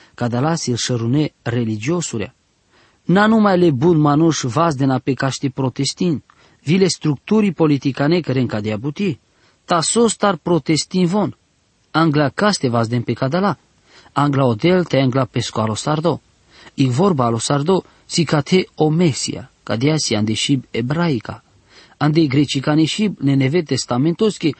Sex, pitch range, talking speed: male, 125-175 Hz, 140 wpm